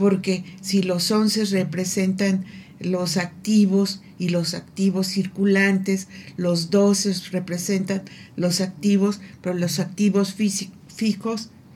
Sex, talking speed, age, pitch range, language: female, 100 wpm, 50-69, 180-210 Hz, Spanish